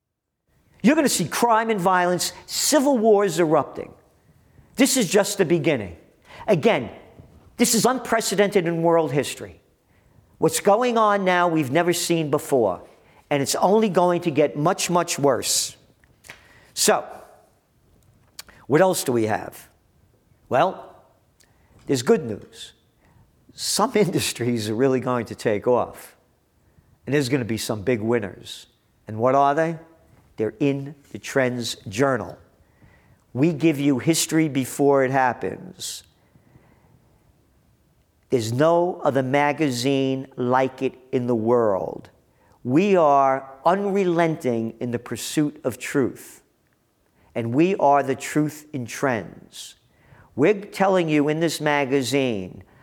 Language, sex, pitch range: English, male, 125-175 Hz